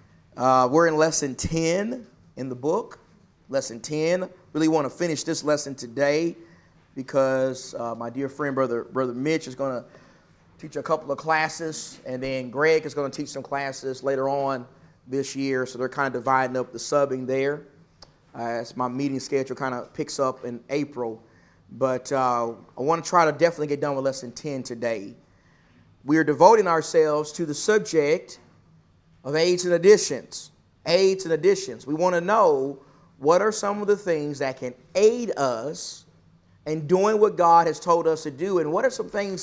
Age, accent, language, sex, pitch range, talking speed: 30-49, American, English, male, 130-165 Hz, 185 wpm